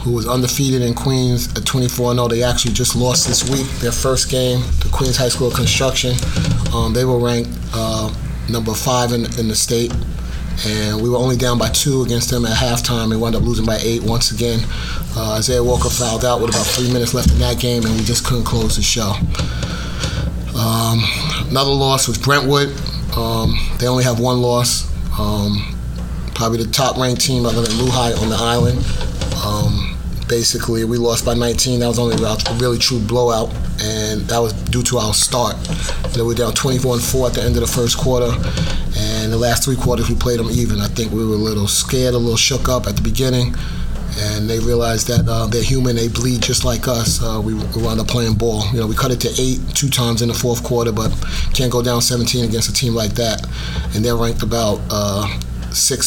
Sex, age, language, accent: male, 30-49, English, American